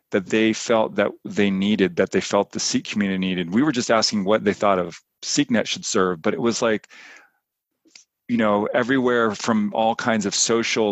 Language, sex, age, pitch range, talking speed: English, male, 40-59, 100-120 Hz, 200 wpm